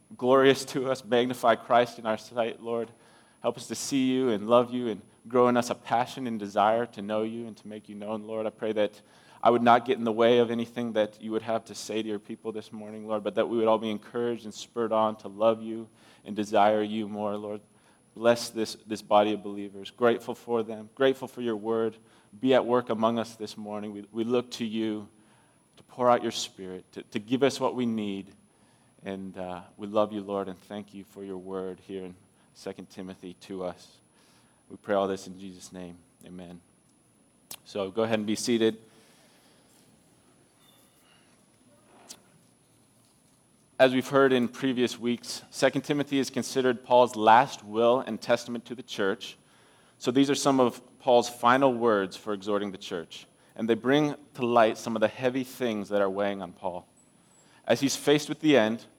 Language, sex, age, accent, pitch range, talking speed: English, male, 20-39, American, 105-120 Hz, 200 wpm